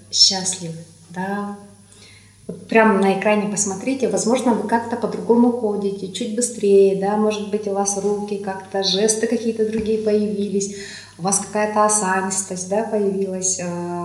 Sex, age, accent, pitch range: female, 20-39, native, 180-215 Hz